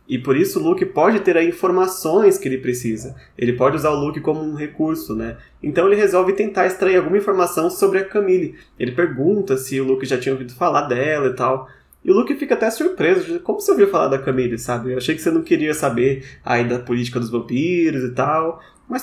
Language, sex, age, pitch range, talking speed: Portuguese, male, 20-39, 125-185 Hz, 225 wpm